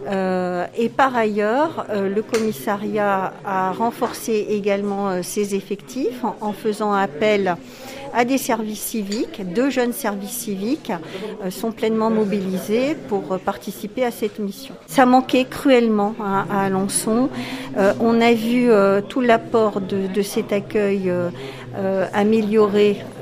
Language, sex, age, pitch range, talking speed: French, female, 50-69, 195-225 Hz, 110 wpm